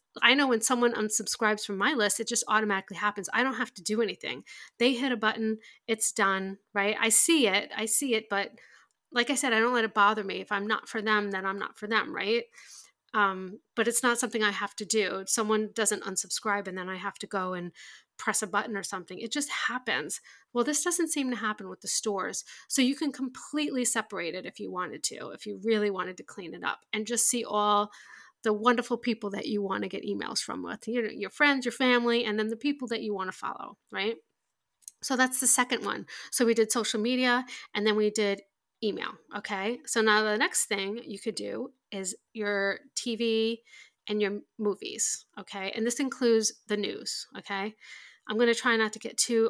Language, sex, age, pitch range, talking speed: English, female, 30-49, 205-240 Hz, 215 wpm